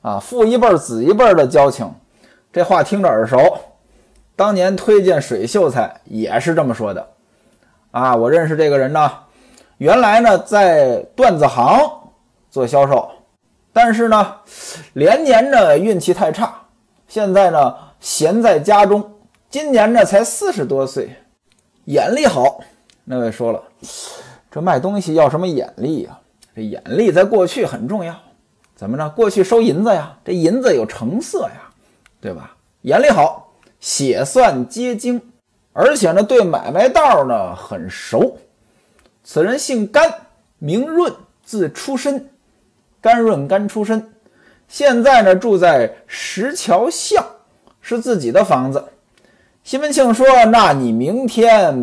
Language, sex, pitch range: Chinese, male, 165-255 Hz